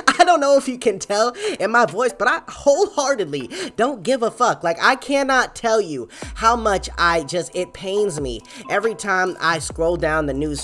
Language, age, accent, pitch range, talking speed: English, 20-39, American, 150-220 Hz, 205 wpm